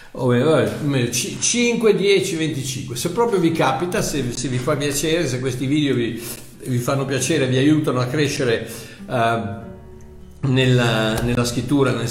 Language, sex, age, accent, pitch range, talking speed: Italian, male, 50-69, native, 130-155 Hz, 125 wpm